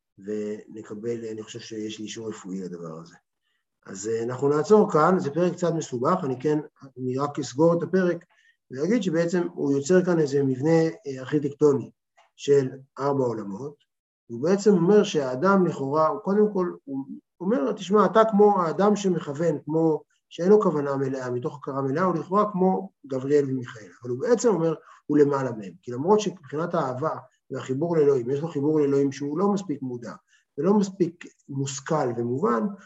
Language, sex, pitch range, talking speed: Hebrew, male, 125-180 Hz, 160 wpm